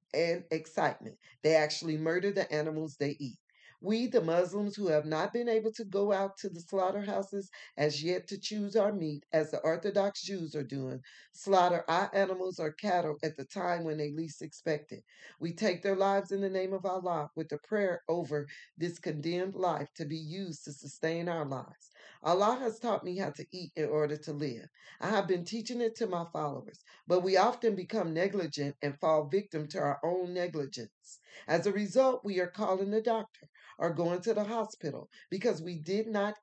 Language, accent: English, American